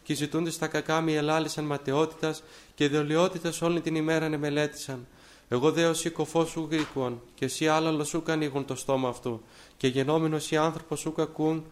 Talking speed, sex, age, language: 170 wpm, male, 20-39, Greek